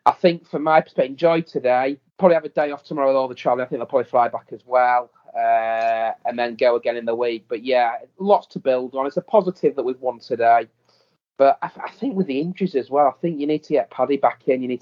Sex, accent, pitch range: male, British, 115-145 Hz